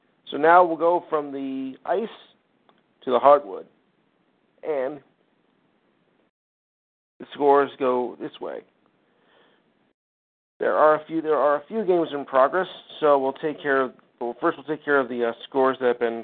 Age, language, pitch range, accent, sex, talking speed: 50-69, English, 130-175 Hz, American, male, 165 wpm